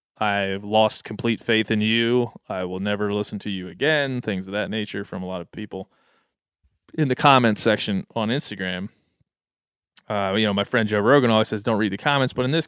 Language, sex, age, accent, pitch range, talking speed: English, male, 20-39, American, 100-115 Hz, 210 wpm